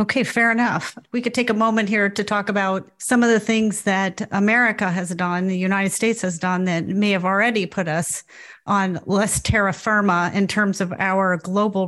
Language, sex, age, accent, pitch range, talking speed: English, female, 40-59, American, 180-205 Hz, 200 wpm